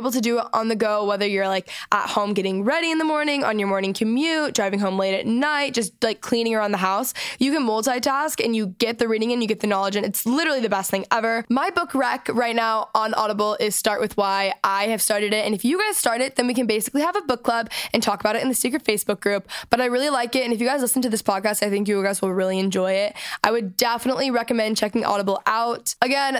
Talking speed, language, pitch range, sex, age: 270 wpm, English, 210-255 Hz, female, 10-29